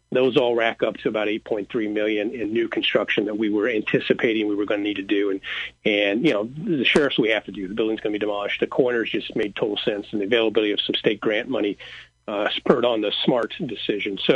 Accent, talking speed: American, 245 wpm